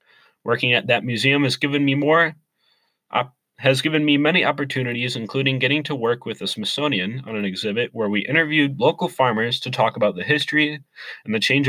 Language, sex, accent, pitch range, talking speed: English, male, American, 110-145 Hz, 190 wpm